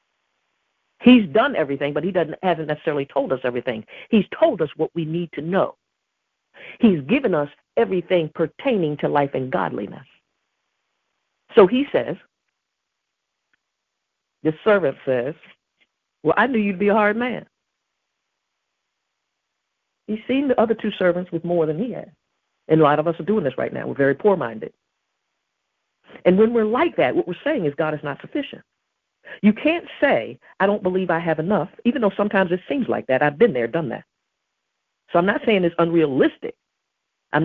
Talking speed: 170 wpm